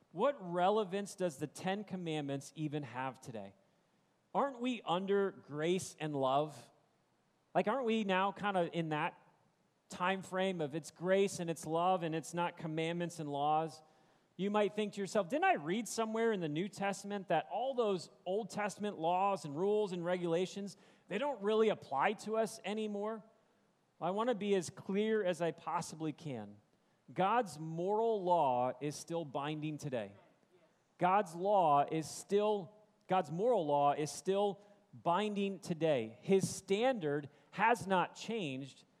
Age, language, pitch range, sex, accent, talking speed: 40-59, English, 160-205 Hz, male, American, 155 wpm